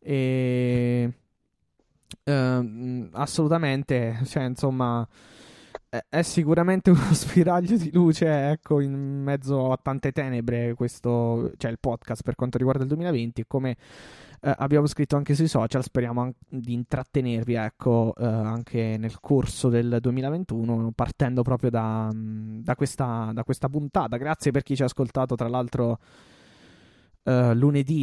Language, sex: Italian, male